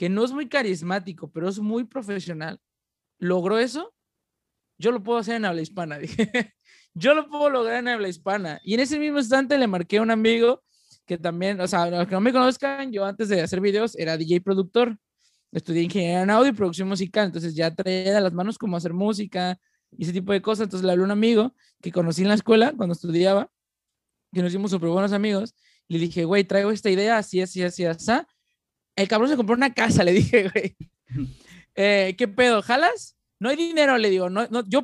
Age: 20-39